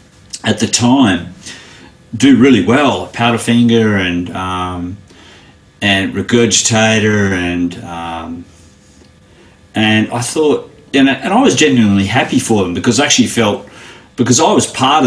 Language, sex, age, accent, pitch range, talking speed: English, male, 40-59, Australian, 100-120 Hz, 130 wpm